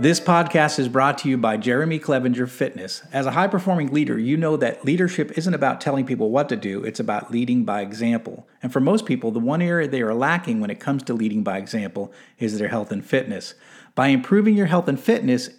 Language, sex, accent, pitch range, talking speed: English, male, American, 120-175 Hz, 225 wpm